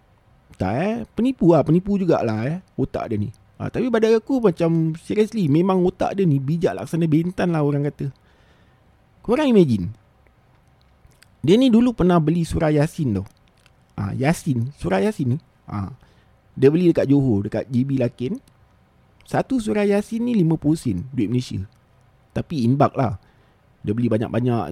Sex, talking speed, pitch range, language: male, 155 wpm, 125-185 Hz, Malay